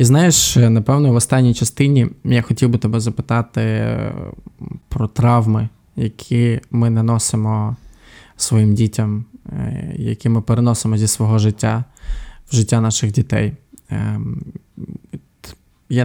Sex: male